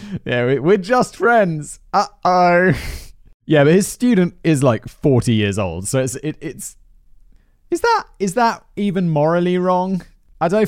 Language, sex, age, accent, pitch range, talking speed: English, male, 30-49, British, 105-160 Hz, 155 wpm